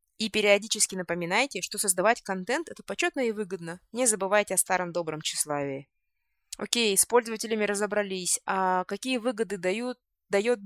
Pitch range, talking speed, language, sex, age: 195-240 Hz, 135 wpm, Russian, female, 20-39